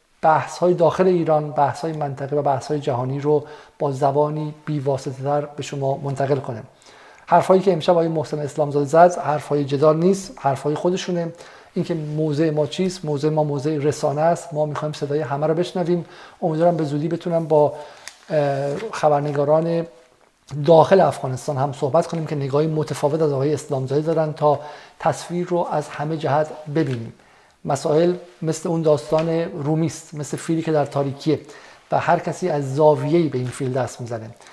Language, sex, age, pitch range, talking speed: Persian, male, 50-69, 140-160 Hz, 160 wpm